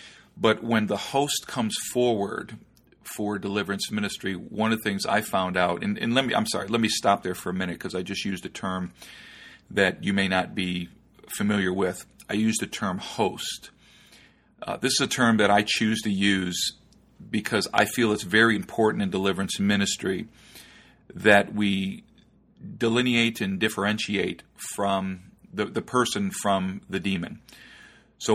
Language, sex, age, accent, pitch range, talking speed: English, male, 40-59, American, 95-115 Hz, 165 wpm